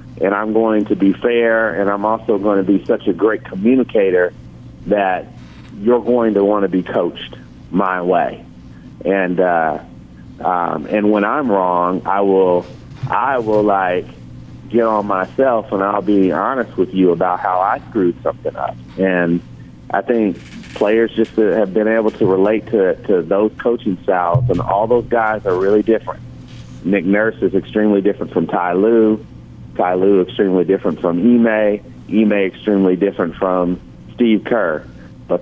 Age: 40-59